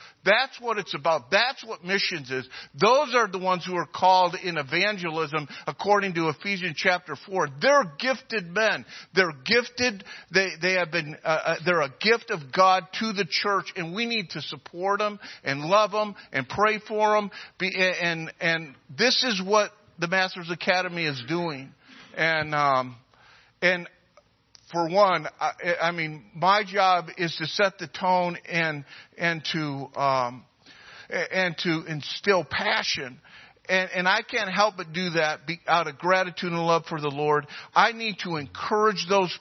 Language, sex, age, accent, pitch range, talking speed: English, male, 50-69, American, 150-205 Hz, 165 wpm